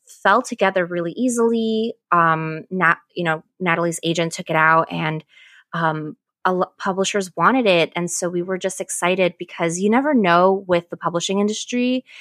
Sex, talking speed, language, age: female, 165 wpm, English, 20-39